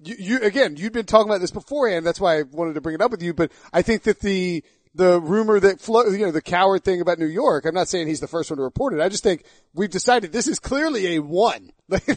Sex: male